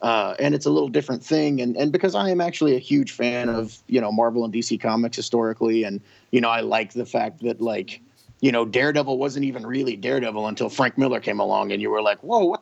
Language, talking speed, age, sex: English, 240 wpm, 30-49, male